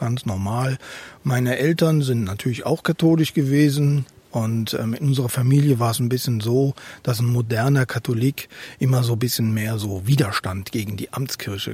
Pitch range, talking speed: 120-145 Hz, 165 wpm